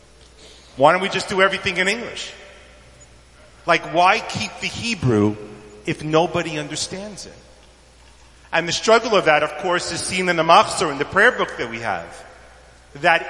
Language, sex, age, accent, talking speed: English, male, 40-59, American, 165 wpm